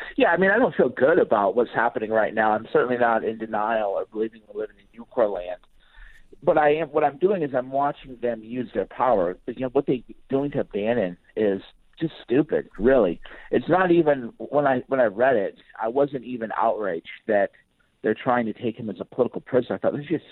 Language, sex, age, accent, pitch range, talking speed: English, male, 50-69, American, 115-155 Hz, 225 wpm